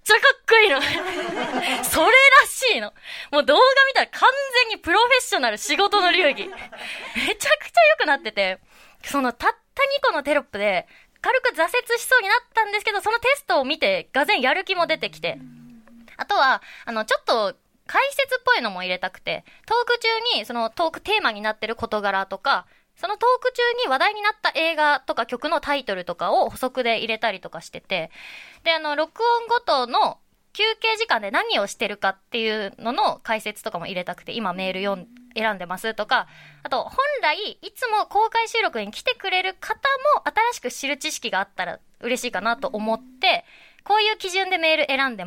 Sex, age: female, 20-39